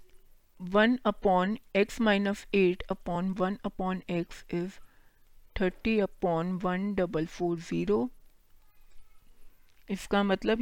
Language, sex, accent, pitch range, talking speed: Hindi, female, native, 180-210 Hz, 100 wpm